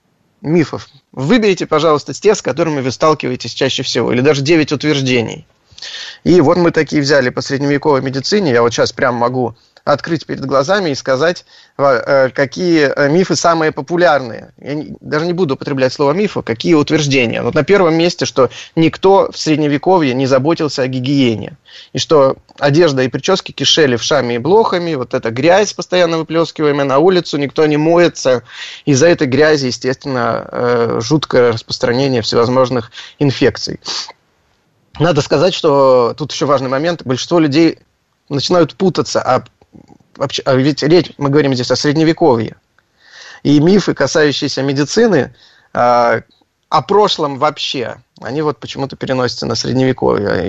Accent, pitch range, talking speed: native, 130-165 Hz, 140 wpm